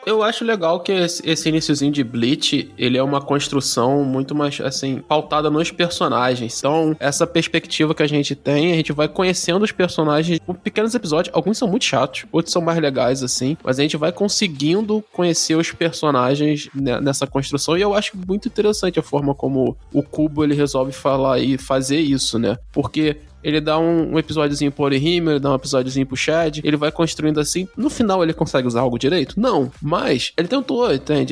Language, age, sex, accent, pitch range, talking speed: Portuguese, 20-39, male, Brazilian, 140-165 Hz, 195 wpm